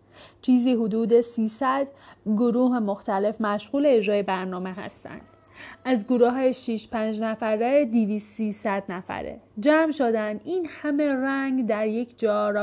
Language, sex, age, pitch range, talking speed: Persian, female, 30-49, 210-255 Hz, 130 wpm